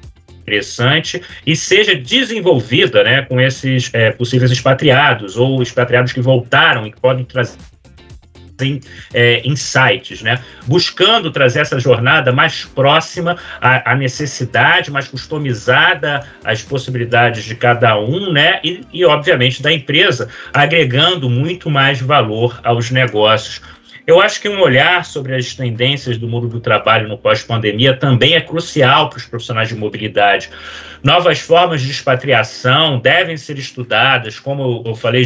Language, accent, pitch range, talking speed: English, Brazilian, 115-140 Hz, 140 wpm